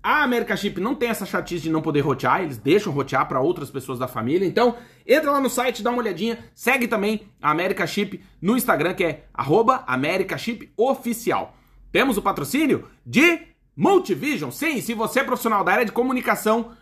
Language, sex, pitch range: Portuguese, male, 165-225 Hz